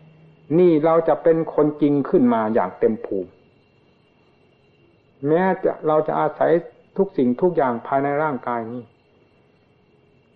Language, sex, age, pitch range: Thai, male, 60-79, 130-160 Hz